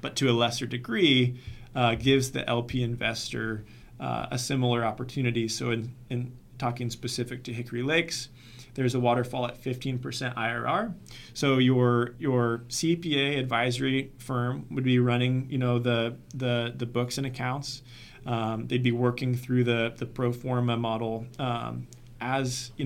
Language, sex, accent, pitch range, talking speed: English, male, American, 120-130 Hz, 150 wpm